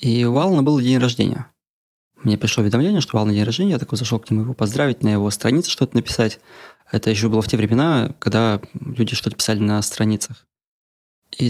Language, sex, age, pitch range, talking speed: Russian, male, 20-39, 110-130 Hz, 200 wpm